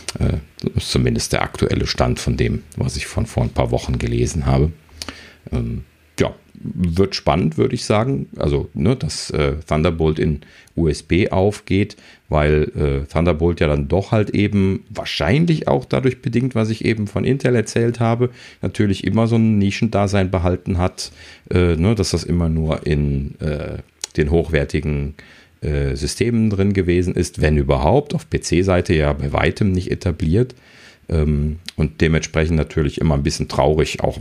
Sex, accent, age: male, German, 40-59